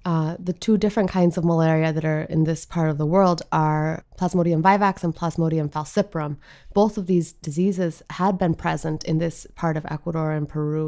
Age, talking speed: 20-39, 195 wpm